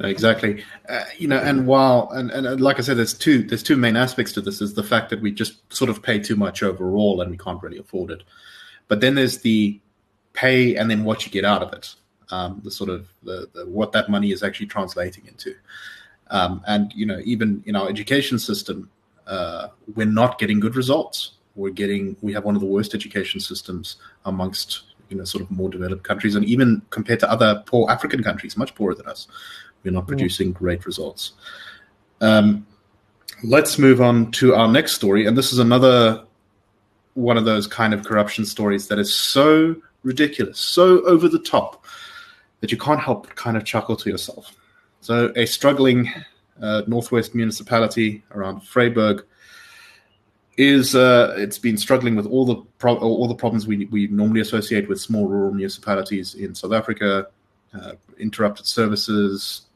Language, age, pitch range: English, 30-49, 100-120 Hz